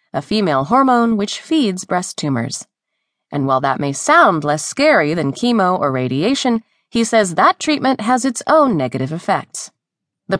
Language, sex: English, female